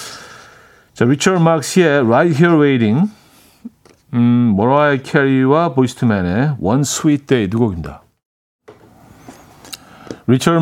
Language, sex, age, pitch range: Korean, male, 50-69, 110-165 Hz